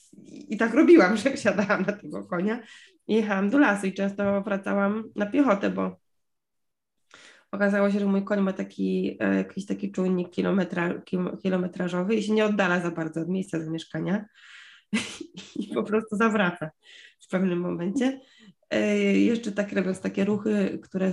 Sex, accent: female, native